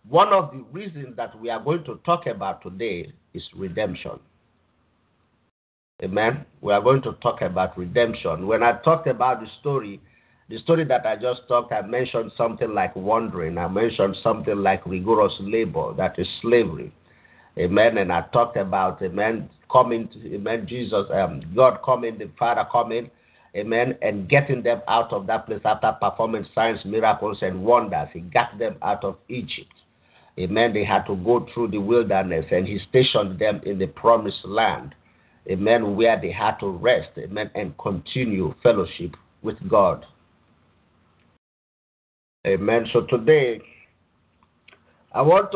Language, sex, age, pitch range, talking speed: English, male, 50-69, 100-130 Hz, 155 wpm